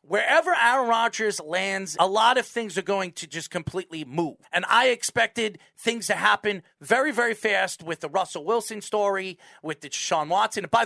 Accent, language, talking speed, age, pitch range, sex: American, English, 190 wpm, 40-59, 160-205 Hz, male